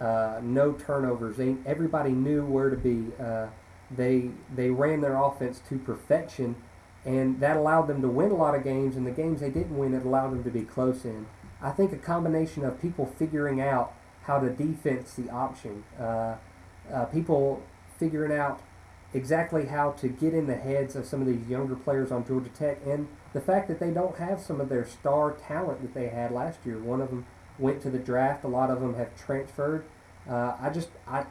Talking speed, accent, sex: 205 wpm, American, male